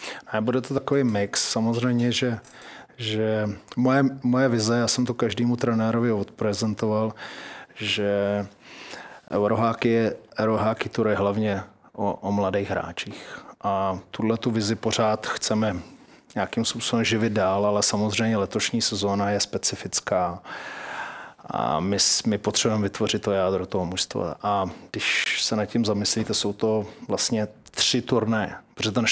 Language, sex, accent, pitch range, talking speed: Czech, male, native, 100-115 Hz, 130 wpm